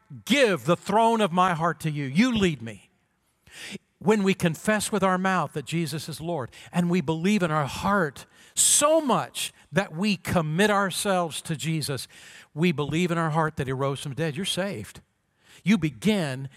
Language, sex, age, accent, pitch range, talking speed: English, male, 50-69, American, 155-200 Hz, 180 wpm